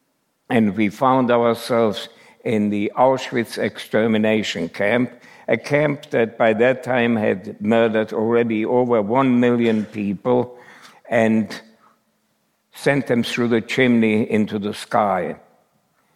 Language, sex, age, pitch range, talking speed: English, male, 60-79, 115-135 Hz, 115 wpm